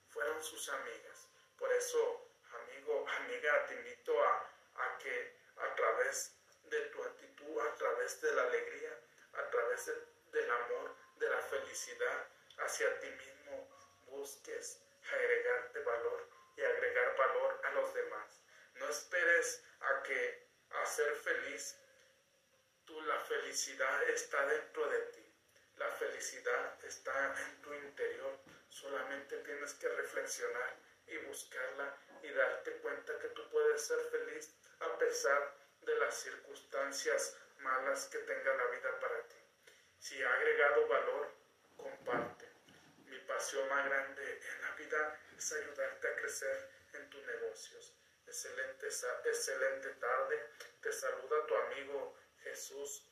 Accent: Mexican